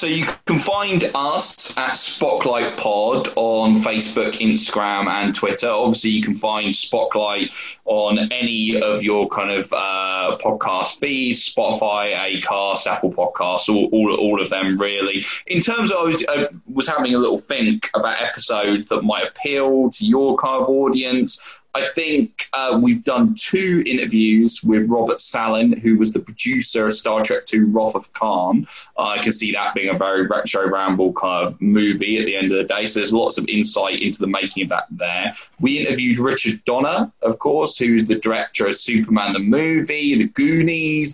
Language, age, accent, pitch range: English, 20-39, British, 105-145 Hz